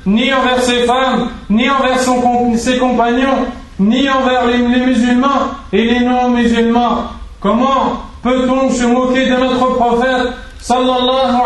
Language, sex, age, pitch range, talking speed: French, male, 40-59, 240-255 Hz, 125 wpm